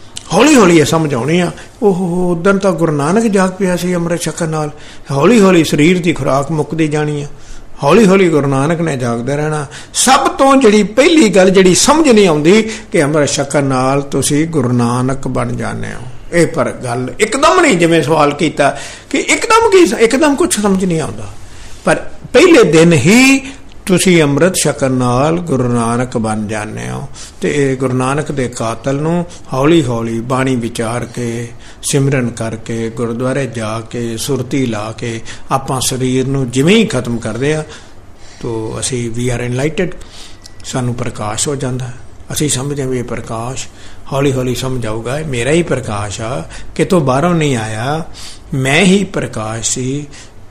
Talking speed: 165 wpm